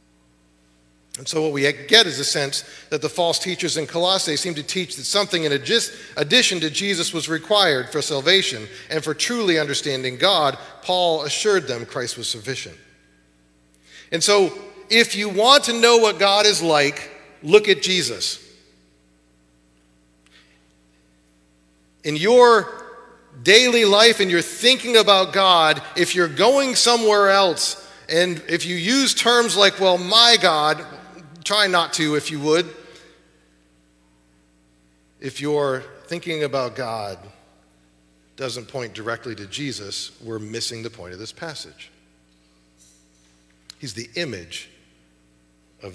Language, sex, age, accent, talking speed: English, male, 40-59, American, 135 wpm